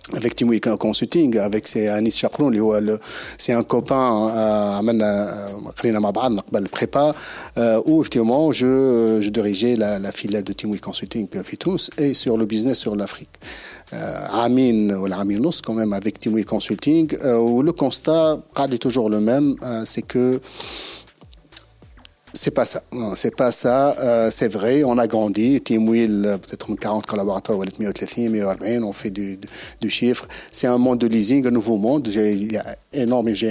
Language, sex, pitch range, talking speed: Arabic, male, 110-130 Hz, 155 wpm